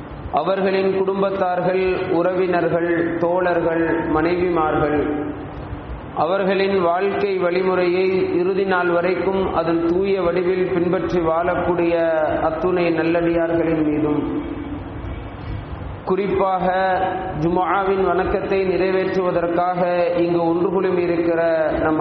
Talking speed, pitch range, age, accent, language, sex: 75 wpm, 160-190 Hz, 40-59, native, Tamil, male